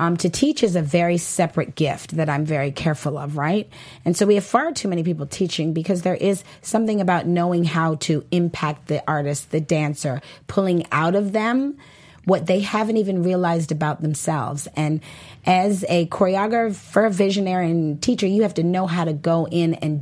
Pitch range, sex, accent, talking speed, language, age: 155-200 Hz, female, American, 190 wpm, English, 30-49